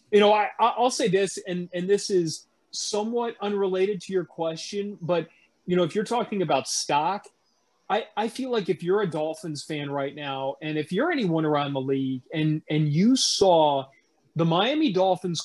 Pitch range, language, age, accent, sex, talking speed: 155-190 Hz, English, 30-49, American, male, 185 wpm